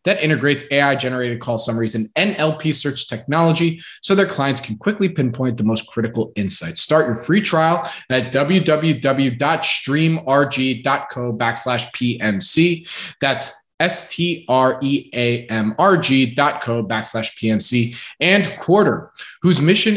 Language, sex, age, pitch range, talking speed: English, male, 20-39, 120-155 Hz, 110 wpm